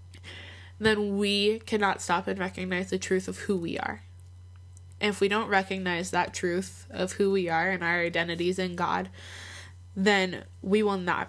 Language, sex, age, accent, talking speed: English, female, 20-39, American, 170 wpm